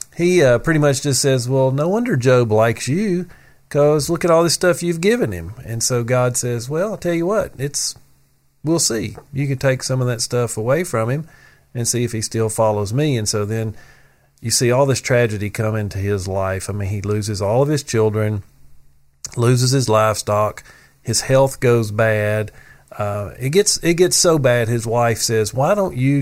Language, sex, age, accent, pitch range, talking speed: English, male, 40-59, American, 110-135 Hz, 205 wpm